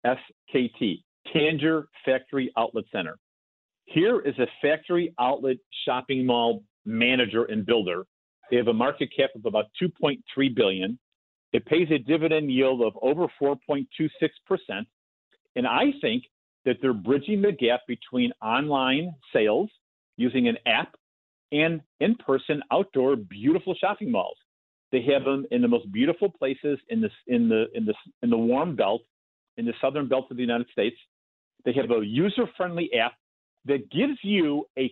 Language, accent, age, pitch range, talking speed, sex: English, American, 50-69, 130-205 Hz, 145 wpm, male